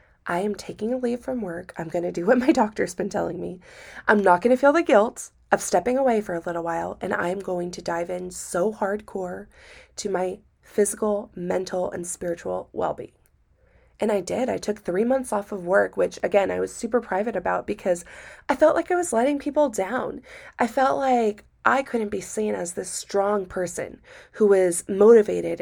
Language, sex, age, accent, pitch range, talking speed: English, female, 20-39, American, 185-255 Hz, 200 wpm